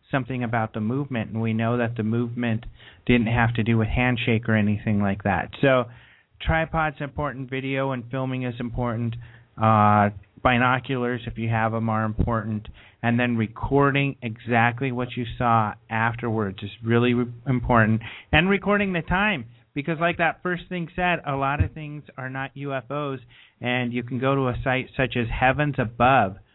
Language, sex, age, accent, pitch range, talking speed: English, male, 30-49, American, 115-140 Hz, 170 wpm